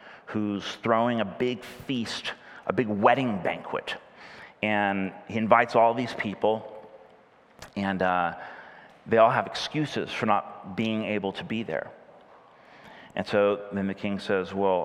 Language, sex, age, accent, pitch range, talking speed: English, male, 30-49, American, 105-140 Hz, 140 wpm